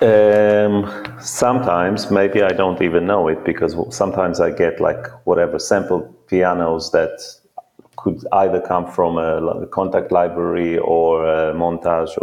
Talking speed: 135 wpm